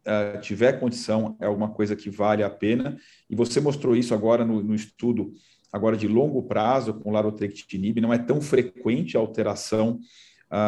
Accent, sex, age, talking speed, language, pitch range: Brazilian, male, 40-59, 175 wpm, Portuguese, 105-120 Hz